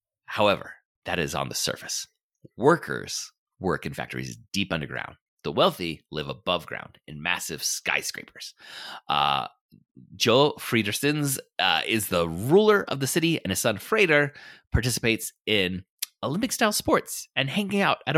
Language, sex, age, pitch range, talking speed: English, male, 30-49, 95-150 Hz, 140 wpm